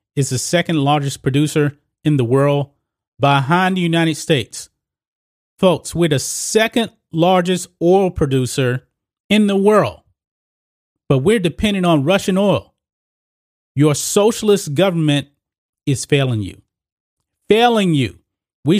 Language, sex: English, male